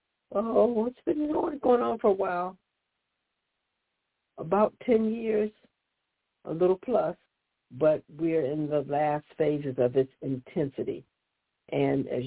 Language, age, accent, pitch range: English, 60-79, American, 135-155 Hz